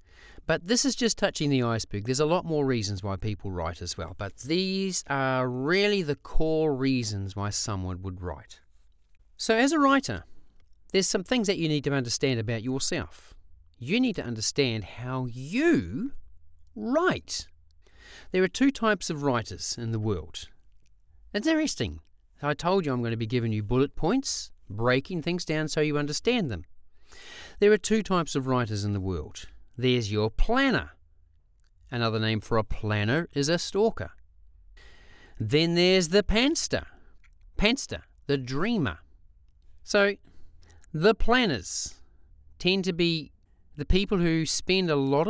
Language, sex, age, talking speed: English, male, 40-59, 155 wpm